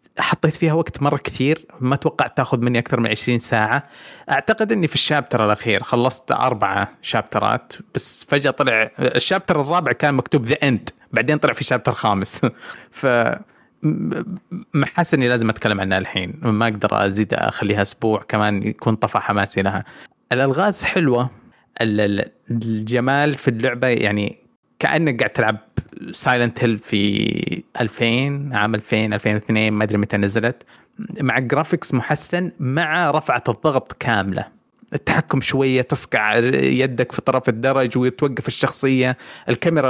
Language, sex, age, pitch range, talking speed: Arabic, male, 30-49, 115-150 Hz, 135 wpm